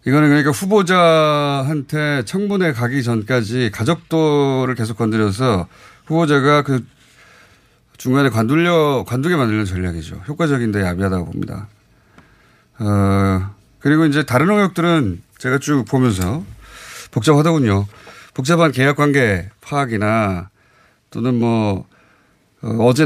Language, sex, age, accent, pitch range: Korean, male, 30-49, native, 105-150 Hz